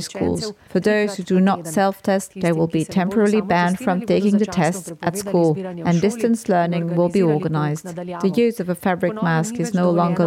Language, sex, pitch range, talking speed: English, female, 165-195 Hz, 195 wpm